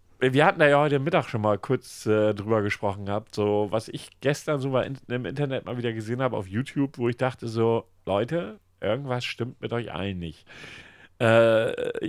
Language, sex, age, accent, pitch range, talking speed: German, male, 40-59, German, 100-125 Hz, 195 wpm